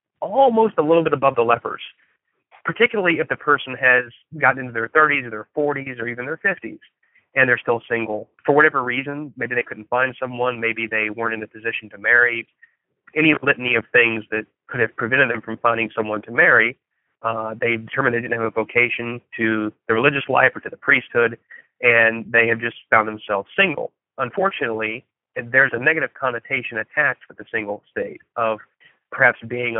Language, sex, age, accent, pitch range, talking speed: English, male, 30-49, American, 115-145 Hz, 185 wpm